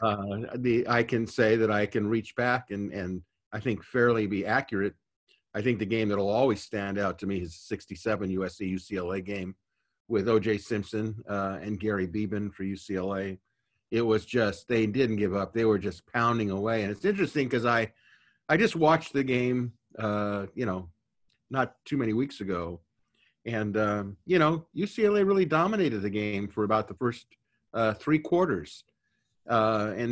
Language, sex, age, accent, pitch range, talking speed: English, male, 50-69, American, 105-125 Hz, 180 wpm